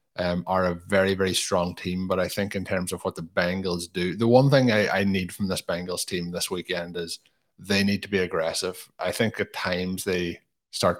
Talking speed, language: 225 wpm, English